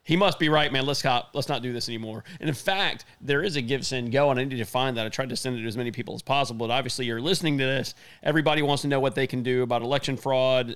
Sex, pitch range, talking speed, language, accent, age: male, 120-140 Hz, 305 wpm, English, American, 30-49